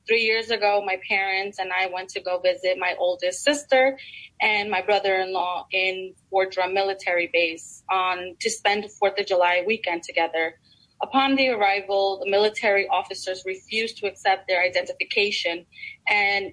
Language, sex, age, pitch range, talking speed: English, female, 20-39, 185-220 Hz, 155 wpm